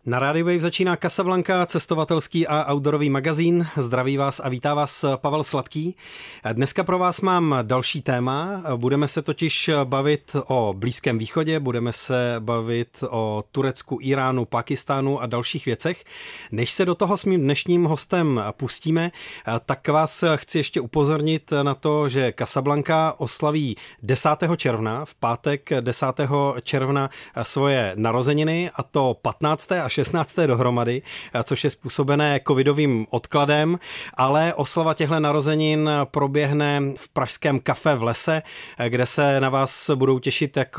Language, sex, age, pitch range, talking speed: Czech, male, 30-49, 125-155 Hz, 140 wpm